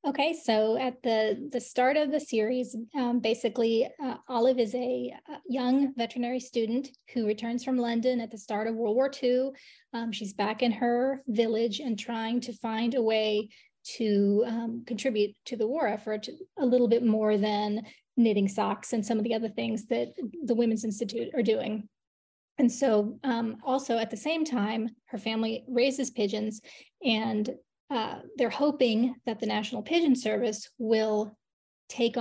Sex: female